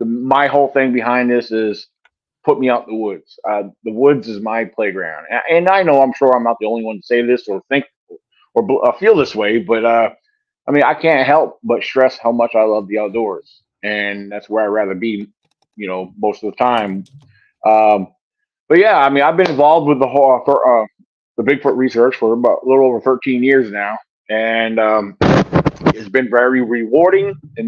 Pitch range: 110-140 Hz